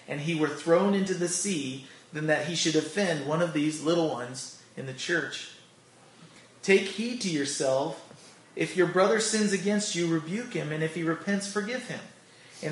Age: 30-49